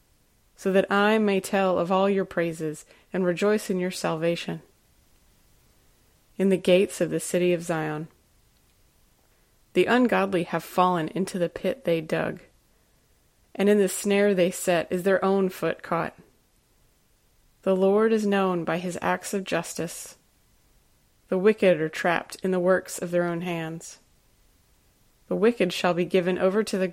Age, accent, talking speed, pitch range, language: 20-39, American, 155 wpm, 160-195 Hz, English